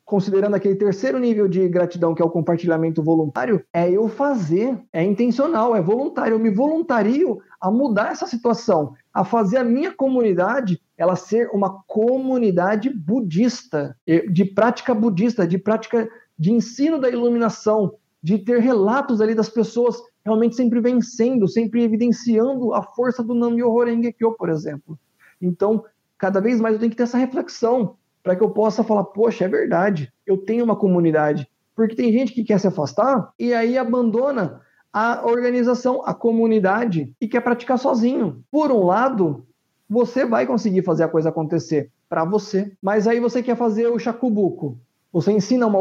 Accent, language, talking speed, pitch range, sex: Brazilian, Portuguese, 165 wpm, 180-240 Hz, male